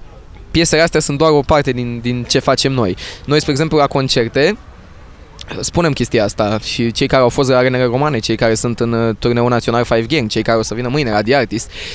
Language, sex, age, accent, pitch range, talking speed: Romanian, male, 20-39, native, 120-155 Hz, 215 wpm